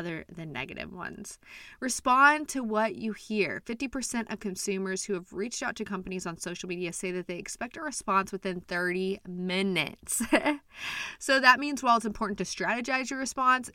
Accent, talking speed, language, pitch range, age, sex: American, 175 wpm, English, 180-235 Hz, 20-39, female